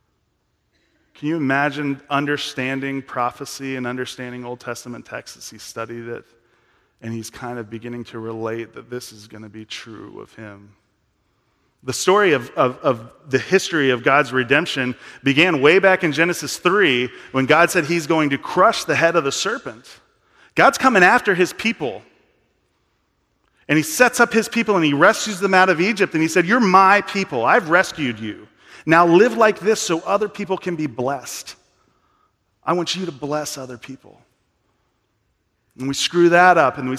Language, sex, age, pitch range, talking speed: English, male, 40-59, 125-180 Hz, 175 wpm